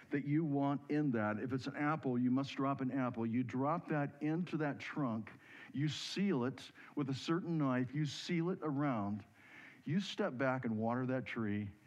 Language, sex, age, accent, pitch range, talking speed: English, male, 60-79, American, 125-165 Hz, 190 wpm